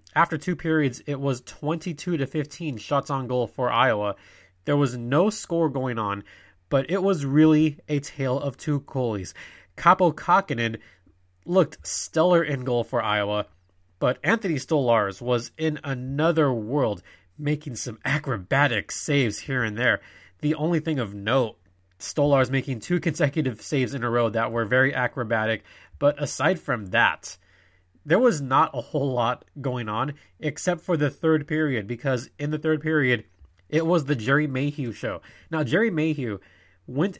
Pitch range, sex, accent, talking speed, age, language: 115-155 Hz, male, American, 160 wpm, 20-39, English